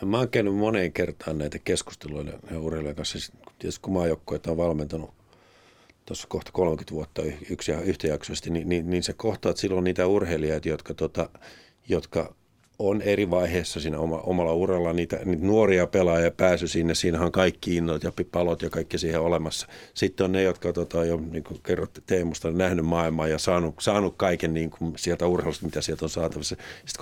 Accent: native